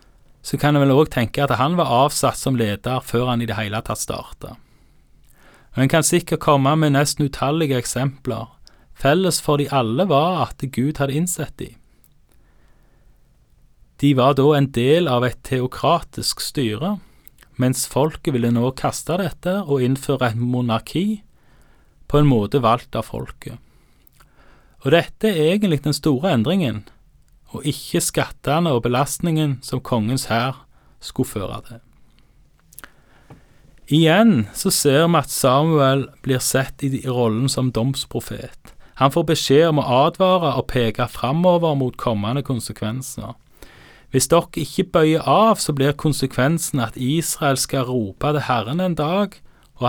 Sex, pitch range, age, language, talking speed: male, 125-155 Hz, 30-49, Danish, 145 wpm